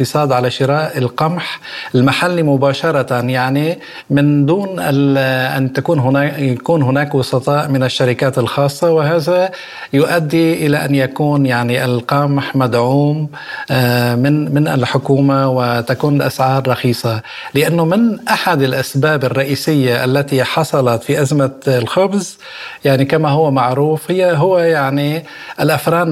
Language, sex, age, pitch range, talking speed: Arabic, male, 50-69, 125-150 Hz, 110 wpm